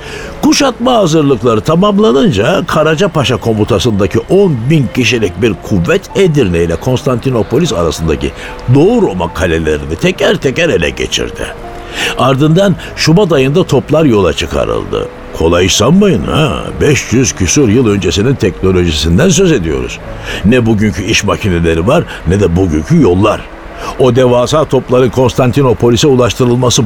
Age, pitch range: 60-79, 100-150 Hz